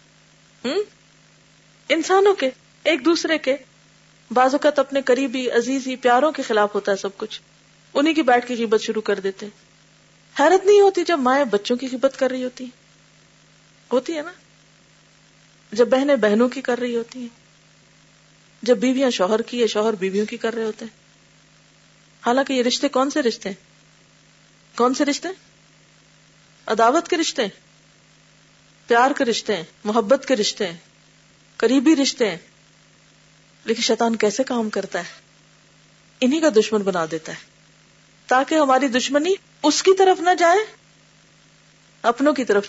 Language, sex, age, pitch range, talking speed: Urdu, female, 40-59, 225-295 Hz, 155 wpm